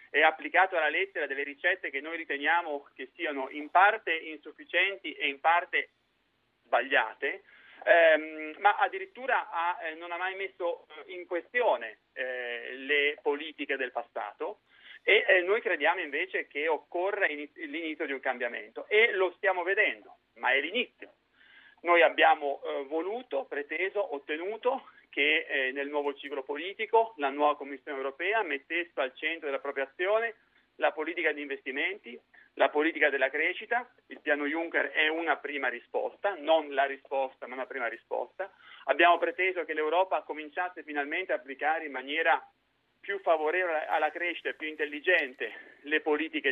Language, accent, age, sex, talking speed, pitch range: Italian, native, 40-59, male, 145 wpm, 145-195 Hz